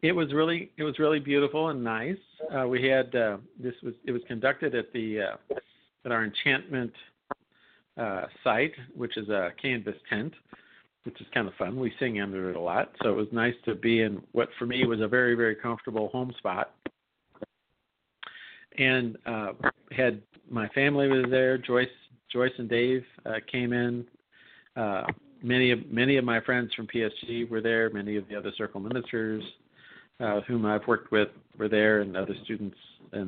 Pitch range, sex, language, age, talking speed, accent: 110-130 Hz, male, English, 50-69, 180 wpm, American